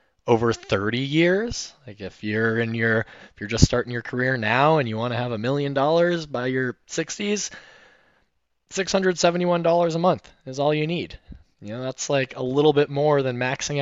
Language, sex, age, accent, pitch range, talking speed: English, male, 20-39, American, 110-150 Hz, 190 wpm